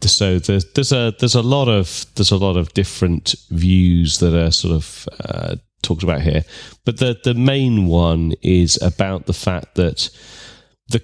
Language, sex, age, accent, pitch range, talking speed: English, male, 30-49, British, 85-110 Hz, 180 wpm